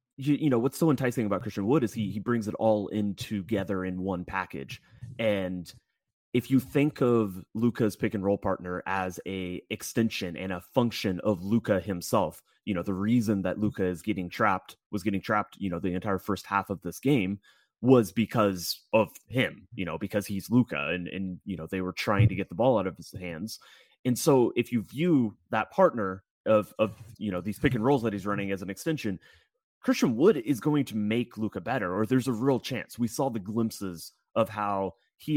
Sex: male